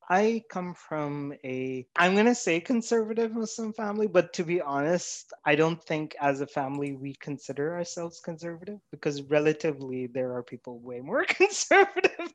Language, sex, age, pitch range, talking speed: English, male, 20-39, 135-175 Hz, 160 wpm